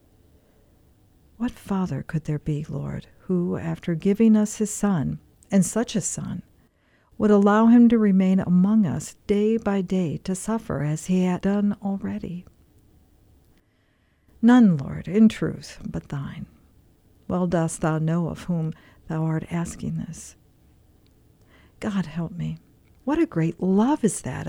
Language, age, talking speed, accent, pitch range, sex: English, 50-69, 140 wpm, American, 155-205 Hz, female